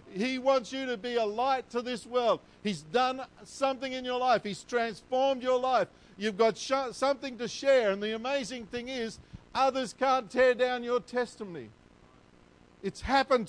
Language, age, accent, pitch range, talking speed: English, 50-69, Australian, 150-245 Hz, 170 wpm